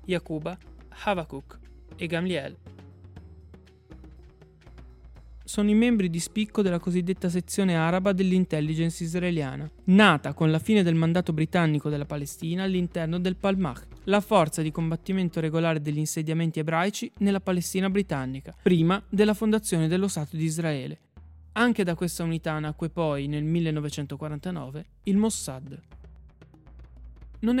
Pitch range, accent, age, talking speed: 145-195 Hz, native, 20-39, 120 wpm